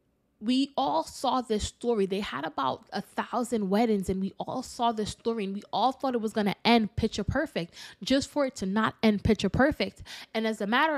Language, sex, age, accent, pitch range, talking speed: English, female, 20-39, American, 205-265 Hz, 220 wpm